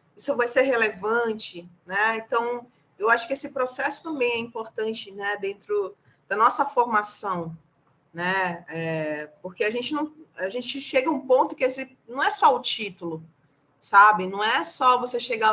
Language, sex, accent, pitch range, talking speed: Portuguese, female, Brazilian, 205-270 Hz, 160 wpm